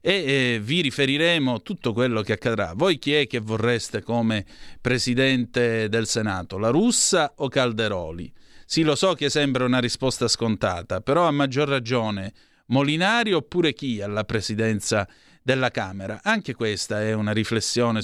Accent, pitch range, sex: native, 110-135 Hz, male